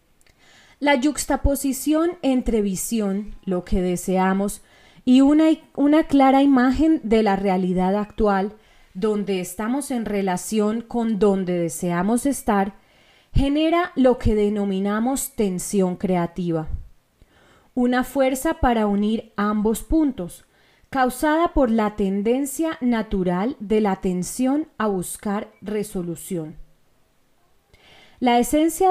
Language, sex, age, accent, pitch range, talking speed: Spanish, female, 30-49, Colombian, 195-270 Hz, 100 wpm